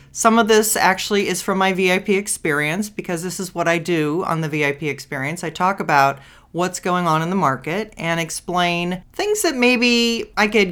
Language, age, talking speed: English, 40-59, 195 wpm